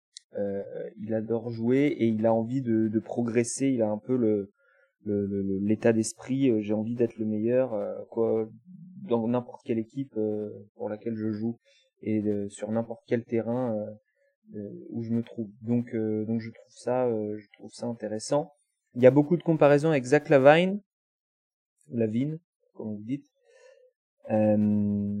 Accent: French